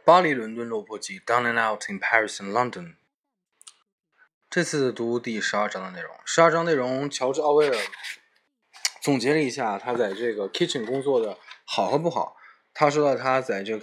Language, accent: Chinese, native